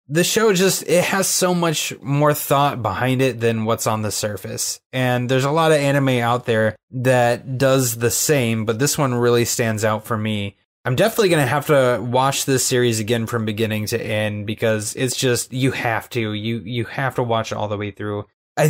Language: English